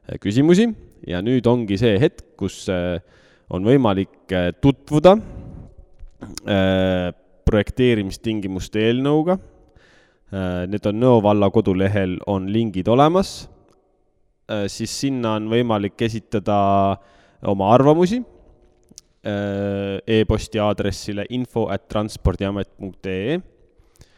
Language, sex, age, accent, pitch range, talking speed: English, male, 20-39, Finnish, 90-115 Hz, 75 wpm